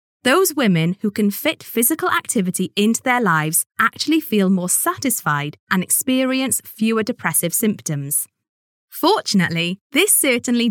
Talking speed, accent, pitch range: 125 wpm, British, 175-265 Hz